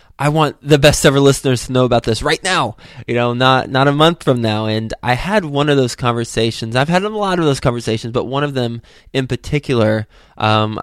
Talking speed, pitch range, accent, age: 225 wpm, 110-140 Hz, American, 20-39